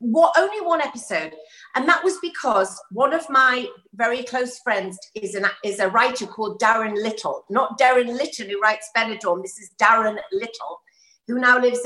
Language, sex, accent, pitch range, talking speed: English, female, British, 210-280 Hz, 175 wpm